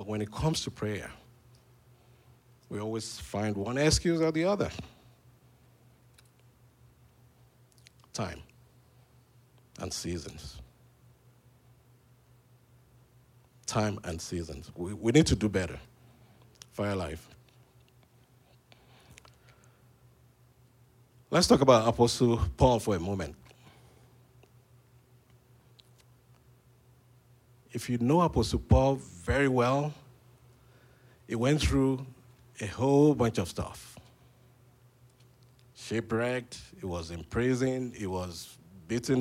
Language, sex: English, male